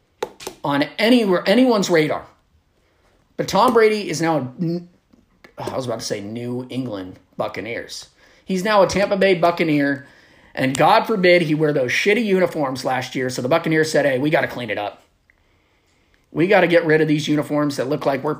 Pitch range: 125-180 Hz